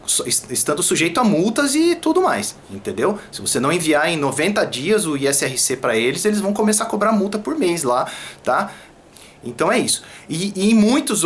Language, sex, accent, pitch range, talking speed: Portuguese, male, Brazilian, 140-215 Hz, 190 wpm